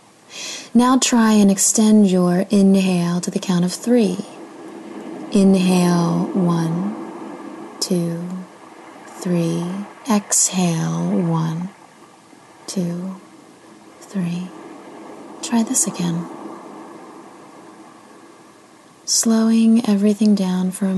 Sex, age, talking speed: female, 20-39, 75 wpm